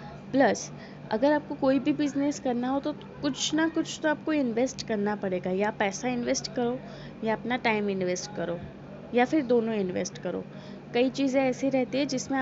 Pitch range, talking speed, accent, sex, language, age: 205-275 Hz, 180 wpm, native, female, Gujarati, 20-39